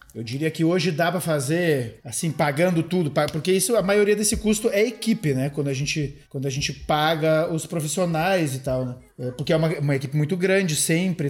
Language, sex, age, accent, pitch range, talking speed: Portuguese, male, 20-39, Brazilian, 140-180 Hz, 205 wpm